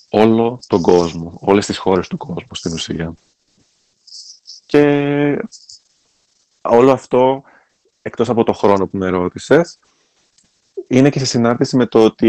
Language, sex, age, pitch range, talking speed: Greek, male, 30-49, 95-120 Hz, 130 wpm